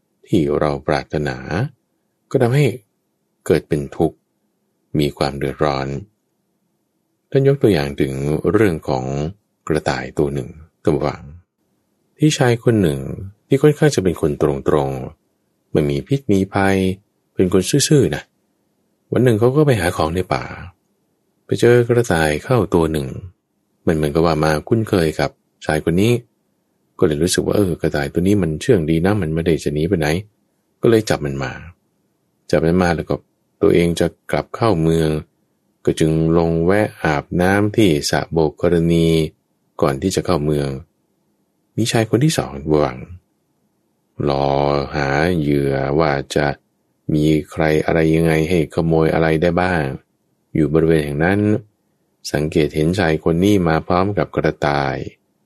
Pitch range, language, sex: 75-100 Hz, English, male